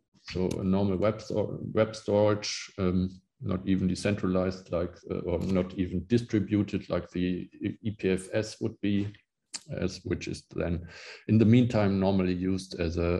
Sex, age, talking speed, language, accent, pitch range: male, 50-69, 145 wpm, English, German, 95-110 Hz